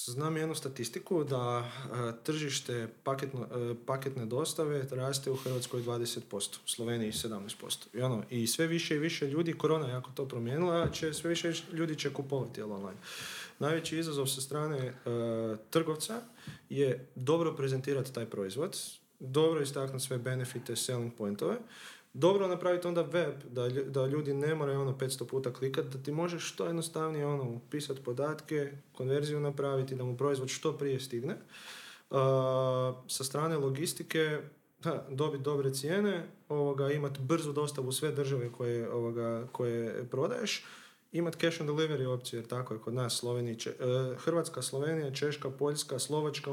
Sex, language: male, Croatian